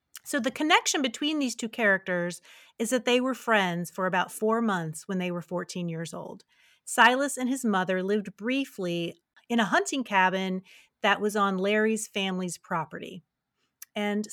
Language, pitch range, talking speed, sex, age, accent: English, 185-240 Hz, 165 wpm, female, 30-49, American